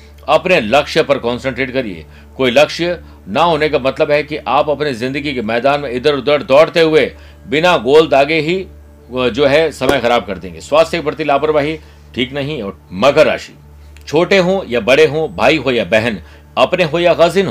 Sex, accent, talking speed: male, native, 190 wpm